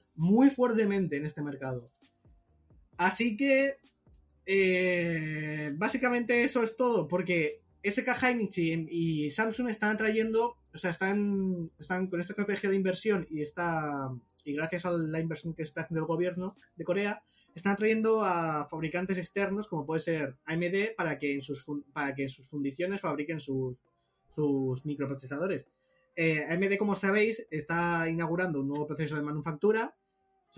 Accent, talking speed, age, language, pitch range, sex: Spanish, 150 wpm, 20-39, Spanish, 150-200 Hz, male